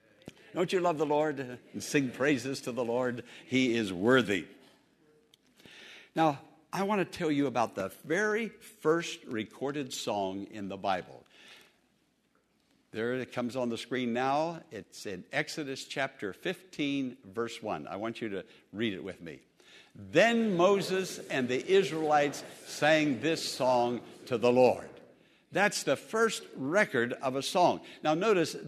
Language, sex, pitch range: English, male, 125-185 Hz